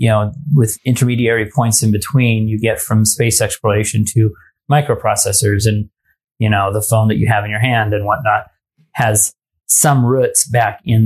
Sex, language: male, English